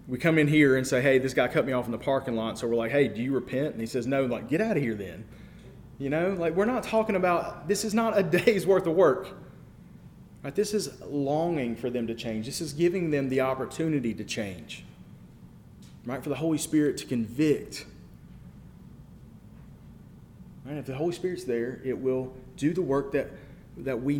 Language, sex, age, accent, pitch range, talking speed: English, male, 30-49, American, 130-195 Hz, 210 wpm